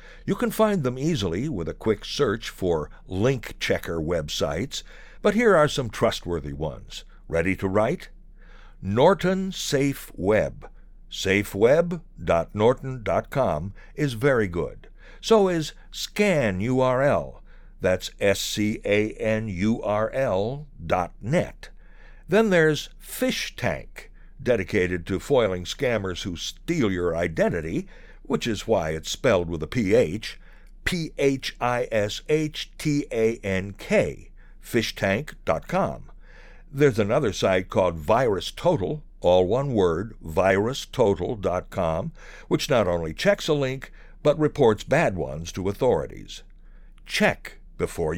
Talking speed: 105 wpm